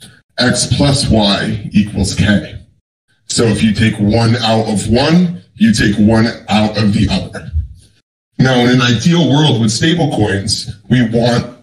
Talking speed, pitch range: 155 wpm, 105-125 Hz